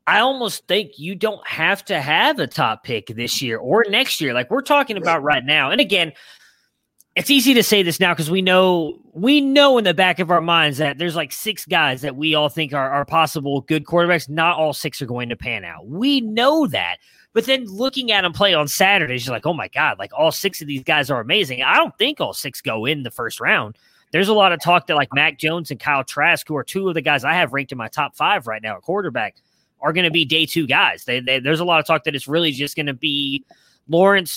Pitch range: 145-190 Hz